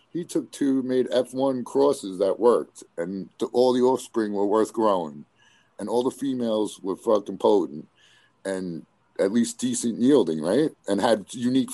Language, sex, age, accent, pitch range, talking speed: English, male, 50-69, American, 100-135 Hz, 160 wpm